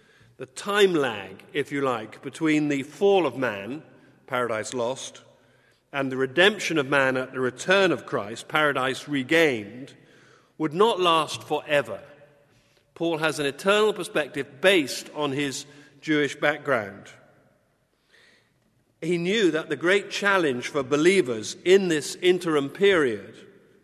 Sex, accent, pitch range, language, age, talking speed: male, British, 140-175 Hz, English, 50-69, 130 wpm